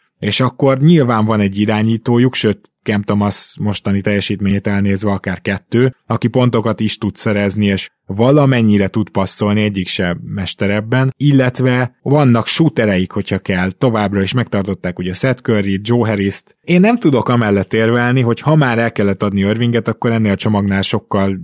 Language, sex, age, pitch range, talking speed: Hungarian, male, 20-39, 100-120 Hz, 155 wpm